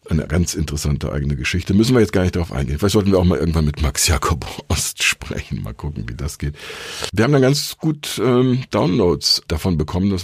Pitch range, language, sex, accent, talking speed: 75-95 Hz, German, male, German, 225 wpm